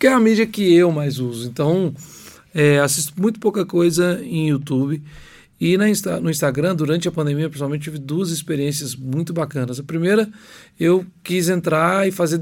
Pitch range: 145-180 Hz